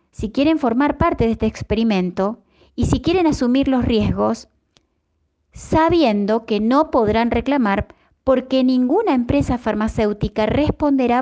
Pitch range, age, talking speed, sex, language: 190-250 Hz, 30-49, 125 wpm, female, Spanish